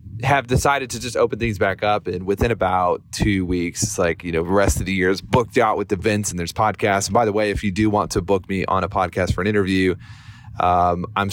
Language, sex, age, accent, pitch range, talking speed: English, male, 30-49, American, 95-115 Hz, 260 wpm